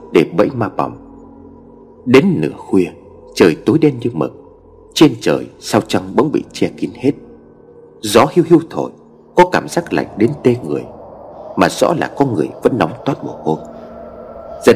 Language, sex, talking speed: Vietnamese, male, 175 wpm